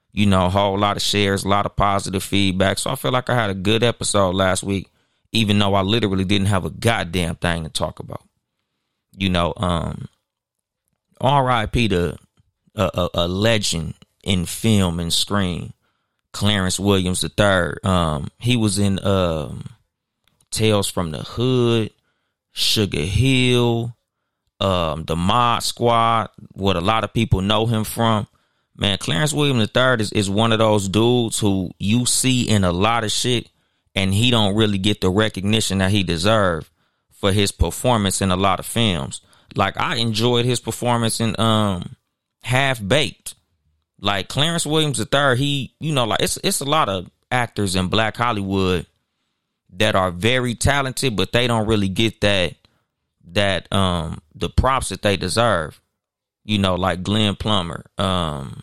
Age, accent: 30-49, American